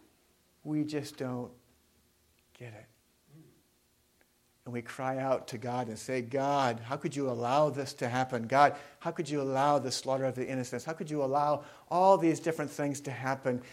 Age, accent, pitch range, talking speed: 50-69, American, 120-160 Hz, 180 wpm